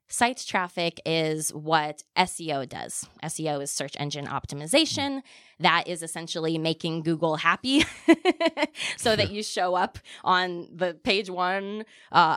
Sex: female